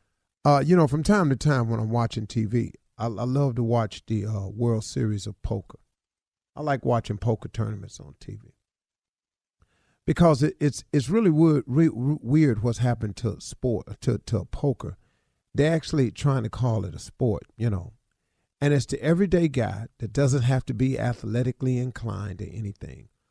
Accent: American